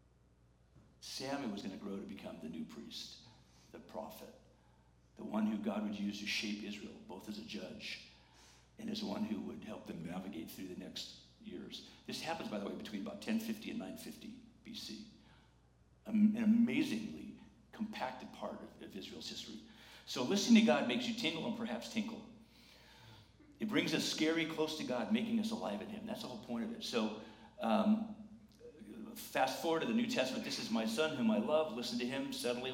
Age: 50-69